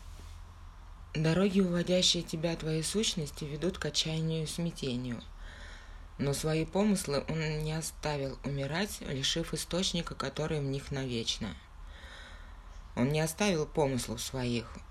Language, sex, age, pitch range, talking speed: Russian, female, 20-39, 110-160 Hz, 115 wpm